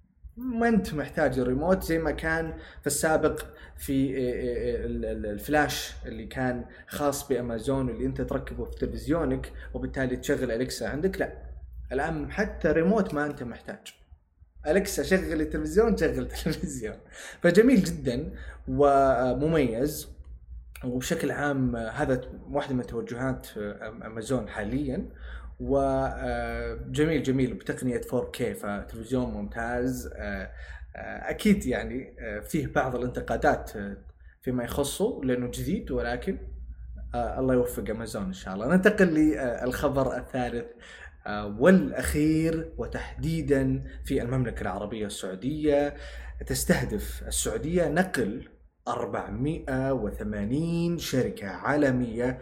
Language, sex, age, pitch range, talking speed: Arabic, male, 20-39, 105-150 Hz, 100 wpm